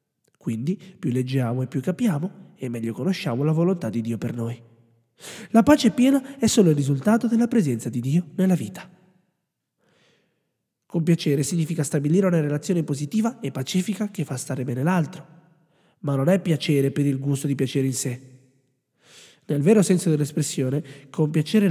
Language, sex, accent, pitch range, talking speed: Italian, male, native, 135-190 Hz, 160 wpm